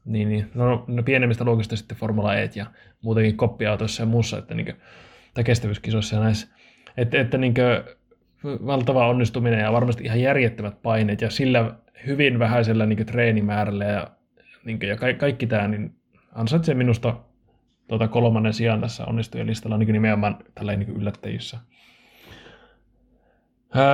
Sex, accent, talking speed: male, native, 160 wpm